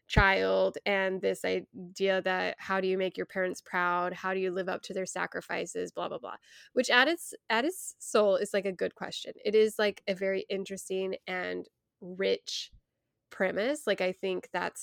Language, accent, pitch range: English, American, 190-250 Hz